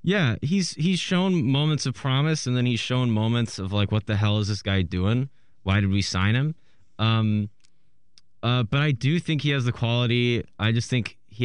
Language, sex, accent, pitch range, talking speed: English, male, American, 95-120 Hz, 210 wpm